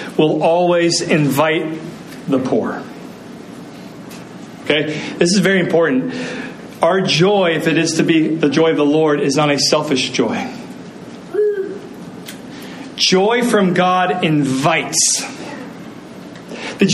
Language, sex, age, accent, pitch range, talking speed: English, male, 40-59, American, 165-225 Hz, 115 wpm